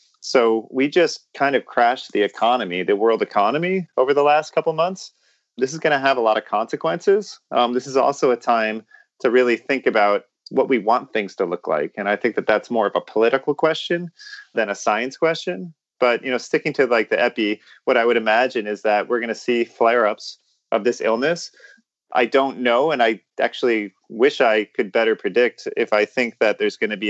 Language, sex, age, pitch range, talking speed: English, male, 30-49, 100-165 Hz, 210 wpm